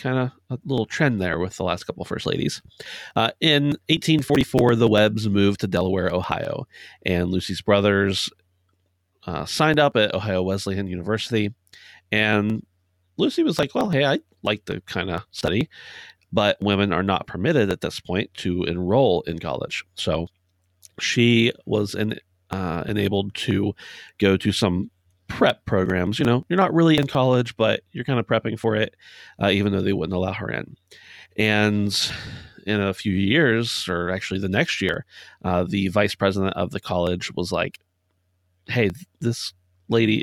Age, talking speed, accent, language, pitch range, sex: 30-49, 165 wpm, American, English, 90-110 Hz, male